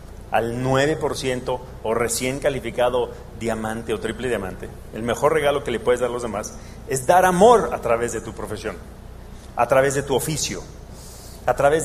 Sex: male